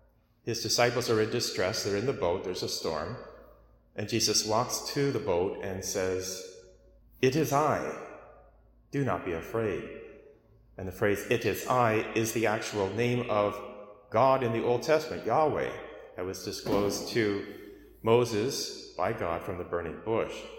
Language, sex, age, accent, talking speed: English, male, 40-59, American, 160 wpm